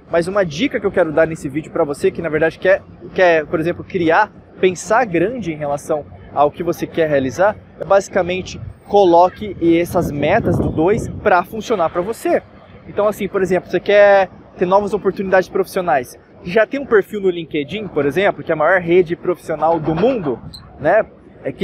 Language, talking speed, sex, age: Portuguese, 185 wpm, male, 20-39